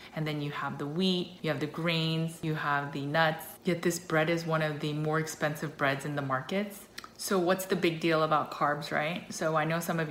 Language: English